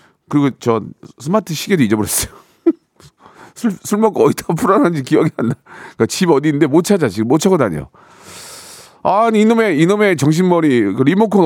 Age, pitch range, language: 40-59, 130-195 Hz, Korean